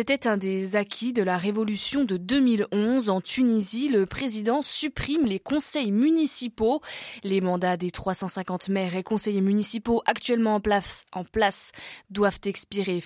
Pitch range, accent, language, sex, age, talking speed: 195-250 Hz, French, French, female, 20-39, 145 wpm